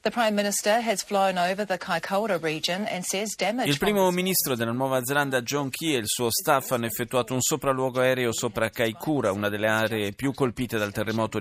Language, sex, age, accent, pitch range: Italian, male, 30-49, native, 105-135 Hz